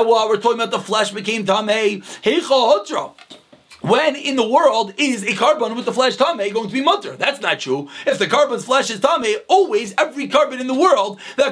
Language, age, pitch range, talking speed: English, 30-49, 215-290 Hz, 215 wpm